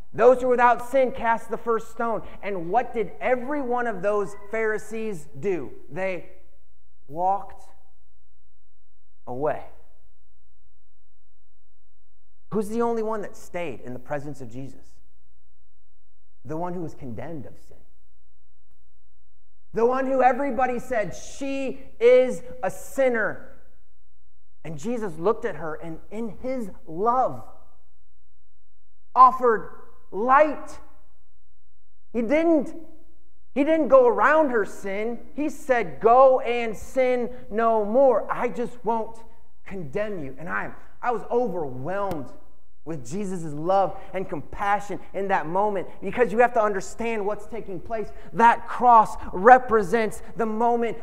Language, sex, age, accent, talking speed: English, male, 30-49, American, 125 wpm